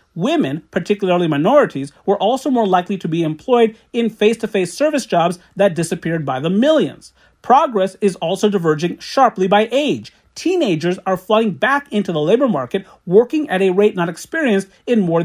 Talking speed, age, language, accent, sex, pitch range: 165 wpm, 40-59, English, American, male, 170-230 Hz